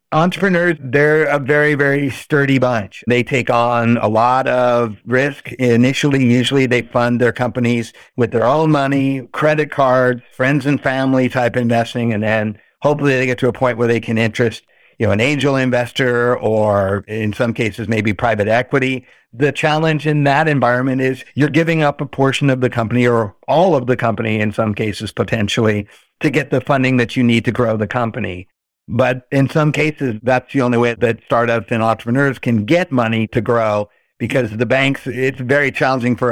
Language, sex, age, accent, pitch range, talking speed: English, male, 50-69, American, 115-135 Hz, 185 wpm